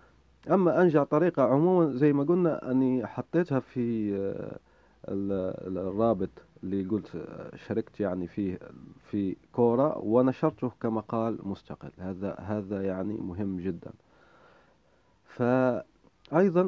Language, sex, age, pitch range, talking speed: Arabic, male, 30-49, 95-125 Hz, 100 wpm